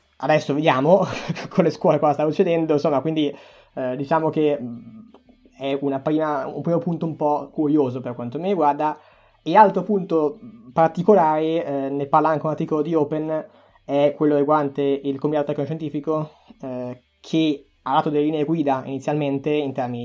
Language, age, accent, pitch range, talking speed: Italian, 20-39, native, 135-165 Hz, 165 wpm